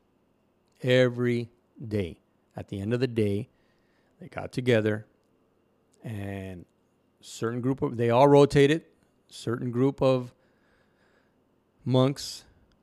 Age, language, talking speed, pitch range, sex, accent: 40-59, English, 105 wpm, 105-130 Hz, male, American